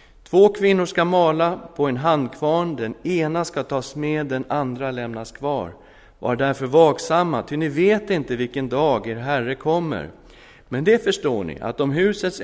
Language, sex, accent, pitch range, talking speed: Swedish, male, native, 115-155 Hz, 170 wpm